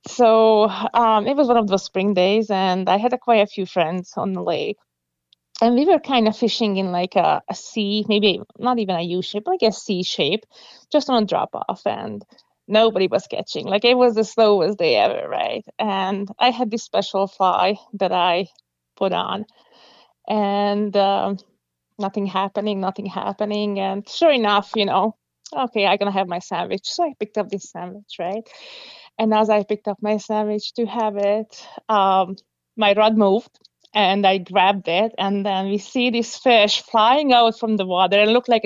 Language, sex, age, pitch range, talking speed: English, female, 20-39, 190-230 Hz, 190 wpm